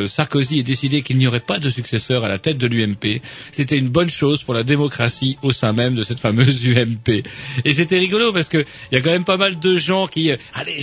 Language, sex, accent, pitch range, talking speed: French, male, French, 125-165 Hz, 240 wpm